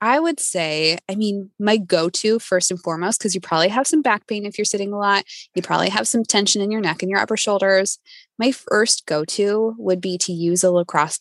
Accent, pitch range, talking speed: American, 170-215 Hz, 230 wpm